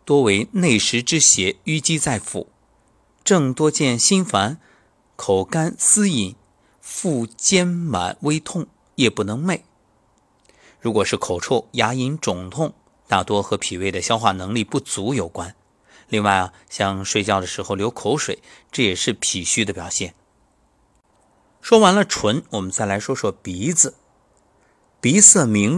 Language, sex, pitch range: Chinese, male, 100-140 Hz